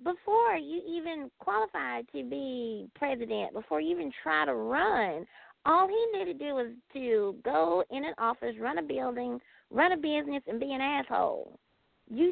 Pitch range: 225-330 Hz